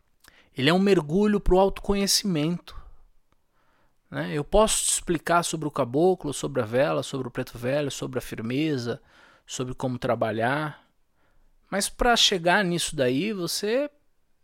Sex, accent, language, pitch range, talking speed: male, Brazilian, Portuguese, 120-200 Hz, 135 wpm